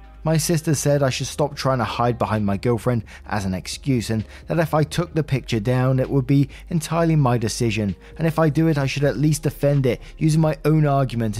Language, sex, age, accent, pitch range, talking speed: English, male, 20-39, British, 115-150 Hz, 230 wpm